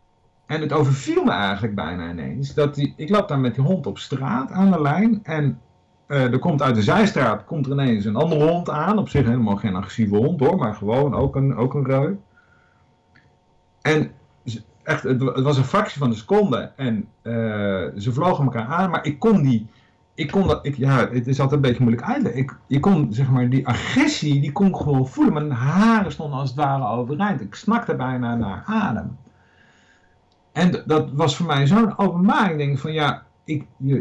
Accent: Dutch